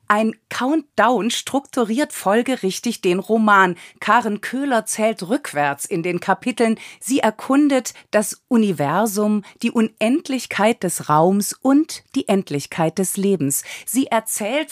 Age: 40-59